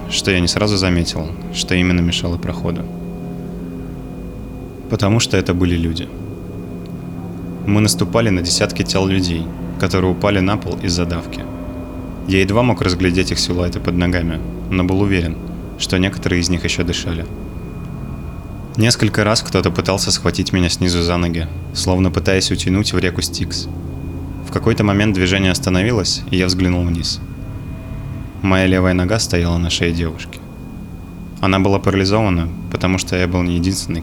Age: 20-39